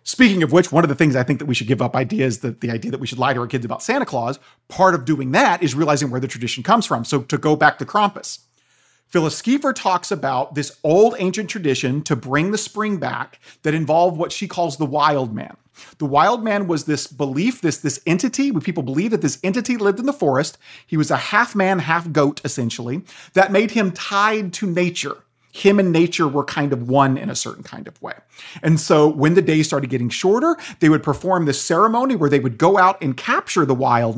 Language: English